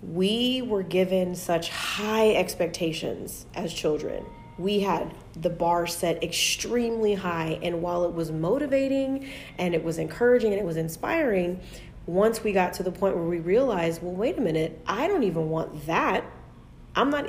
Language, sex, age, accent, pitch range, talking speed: English, female, 30-49, American, 165-190 Hz, 165 wpm